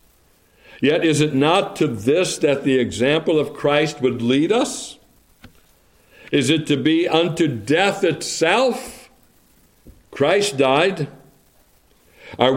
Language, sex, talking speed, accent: English, male, 115 wpm, American